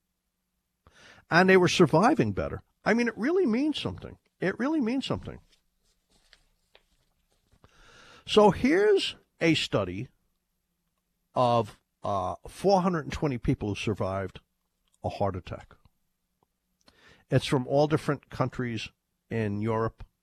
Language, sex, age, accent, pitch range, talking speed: English, male, 50-69, American, 105-150 Hz, 105 wpm